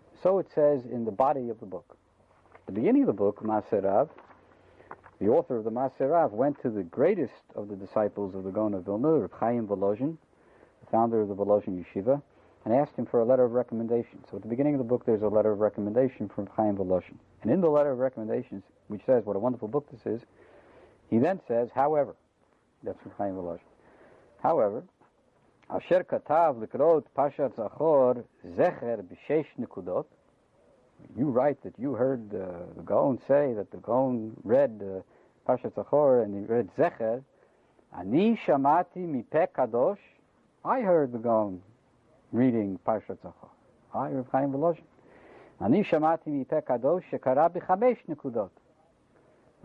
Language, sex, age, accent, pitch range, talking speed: English, male, 60-79, American, 105-140 Hz, 140 wpm